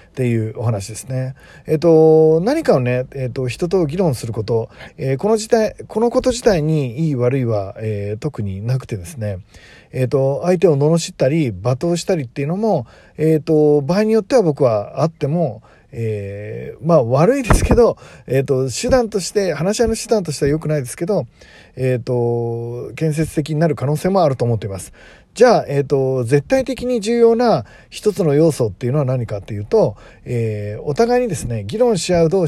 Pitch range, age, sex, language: 120-180 Hz, 40-59, male, Japanese